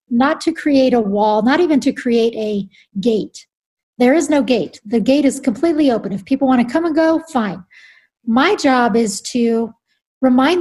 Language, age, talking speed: English, 40-59, 185 wpm